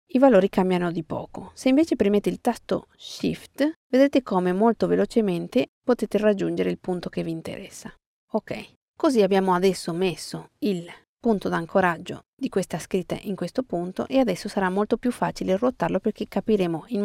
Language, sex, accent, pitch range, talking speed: Italian, female, native, 180-230 Hz, 160 wpm